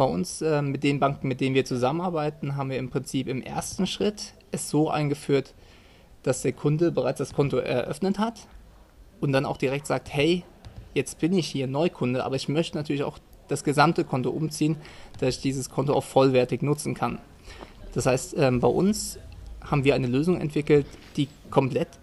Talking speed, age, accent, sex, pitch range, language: 185 wpm, 20-39, German, male, 125-155 Hz, German